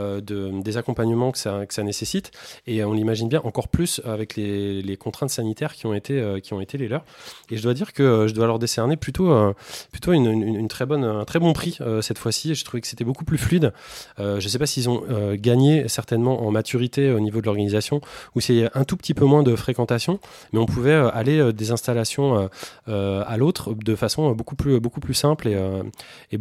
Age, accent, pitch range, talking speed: 20-39, French, 105-130 Hz, 225 wpm